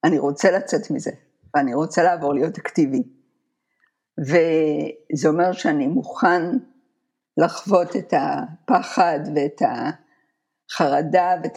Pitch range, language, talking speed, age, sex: 155-255 Hz, Hebrew, 100 wpm, 50-69, female